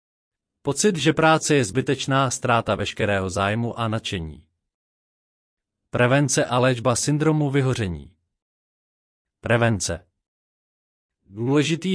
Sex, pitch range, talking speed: male, 110-145 Hz, 85 wpm